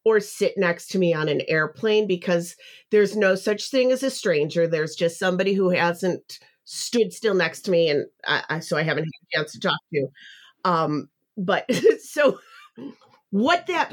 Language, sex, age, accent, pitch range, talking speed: English, female, 40-59, American, 180-255 Hz, 175 wpm